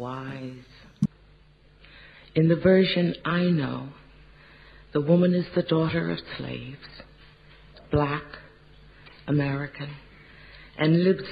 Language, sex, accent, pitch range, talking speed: Hebrew, female, American, 145-175 Hz, 90 wpm